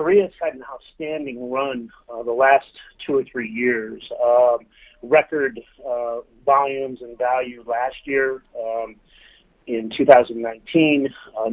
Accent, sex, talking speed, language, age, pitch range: American, male, 120 wpm, English, 40-59, 120-145 Hz